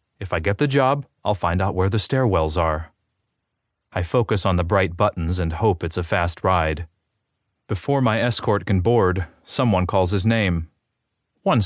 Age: 30-49